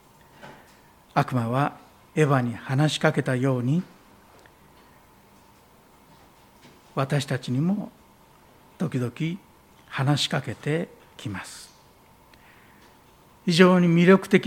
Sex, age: male, 60-79